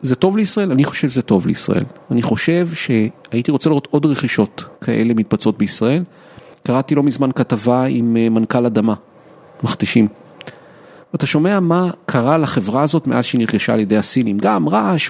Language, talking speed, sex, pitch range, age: Hebrew, 160 wpm, male, 125-170 Hz, 40-59